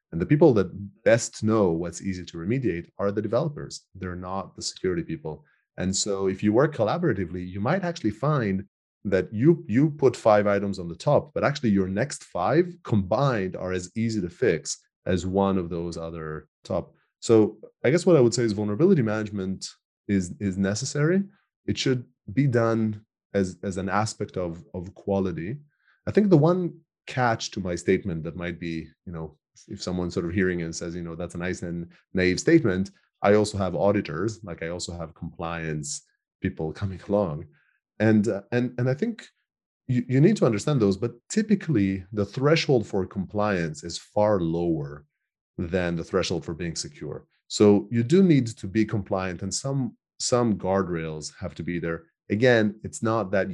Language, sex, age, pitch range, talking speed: English, male, 30-49, 90-120 Hz, 185 wpm